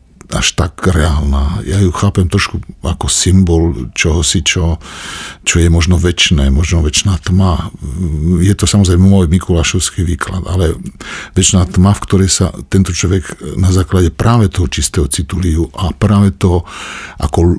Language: Slovak